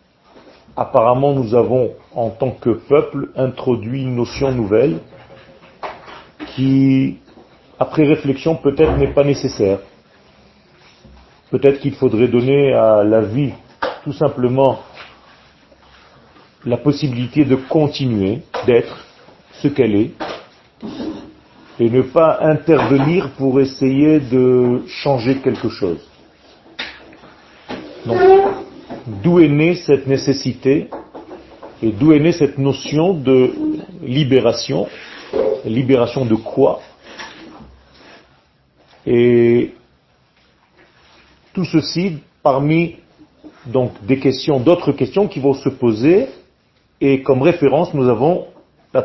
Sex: male